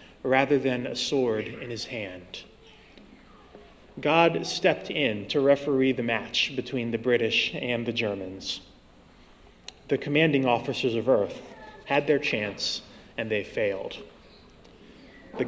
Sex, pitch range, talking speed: male, 120-150 Hz, 125 wpm